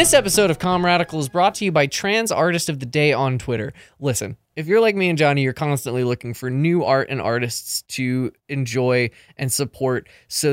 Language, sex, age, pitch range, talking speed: English, male, 20-39, 120-160 Hz, 205 wpm